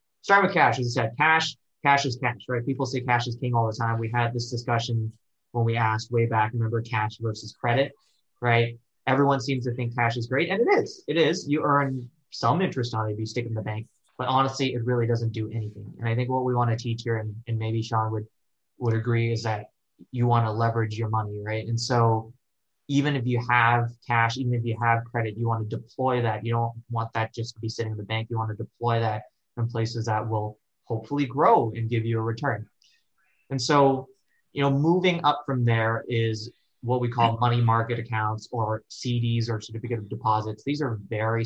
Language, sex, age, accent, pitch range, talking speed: English, male, 20-39, American, 110-125 Hz, 225 wpm